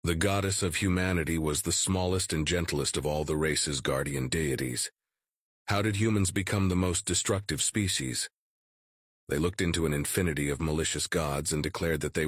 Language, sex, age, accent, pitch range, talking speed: English, male, 40-59, American, 70-90 Hz, 170 wpm